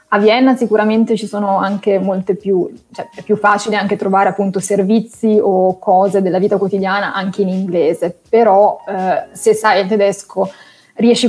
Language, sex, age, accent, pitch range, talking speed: Italian, female, 20-39, native, 195-225 Hz, 165 wpm